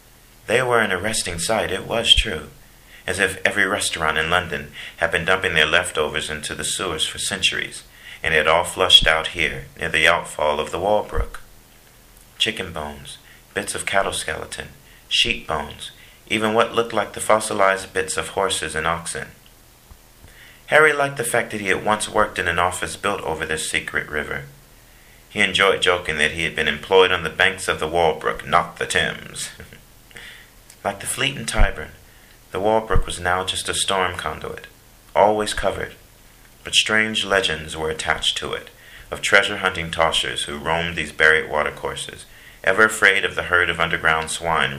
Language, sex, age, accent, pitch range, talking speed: English, male, 40-59, American, 80-105 Hz, 170 wpm